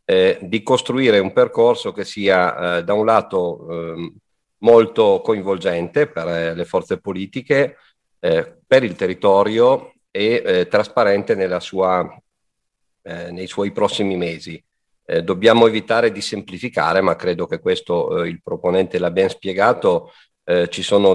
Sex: male